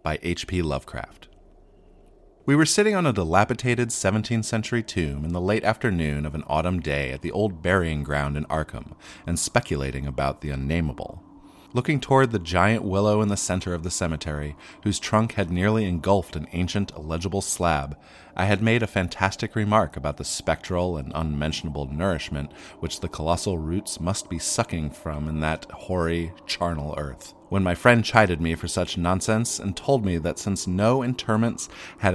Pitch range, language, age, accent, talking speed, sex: 80-110 Hz, English, 30-49, American, 175 wpm, male